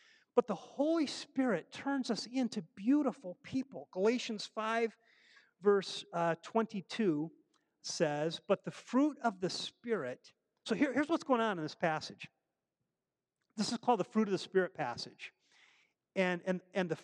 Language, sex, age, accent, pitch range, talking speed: English, male, 40-59, American, 175-245 Hz, 150 wpm